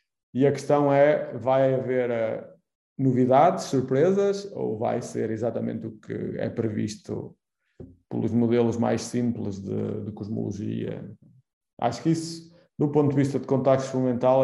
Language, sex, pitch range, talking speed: Portuguese, male, 115-135 Hz, 140 wpm